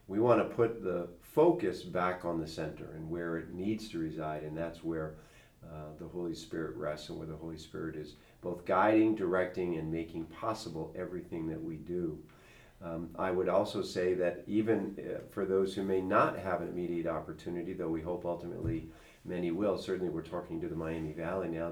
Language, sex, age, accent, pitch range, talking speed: English, male, 50-69, American, 80-95 Hz, 195 wpm